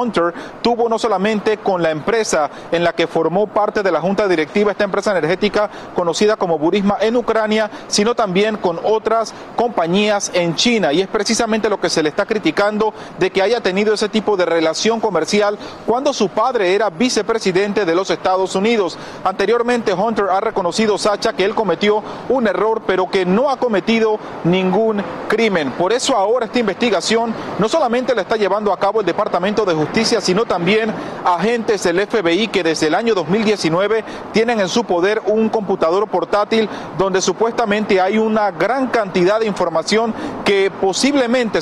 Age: 40-59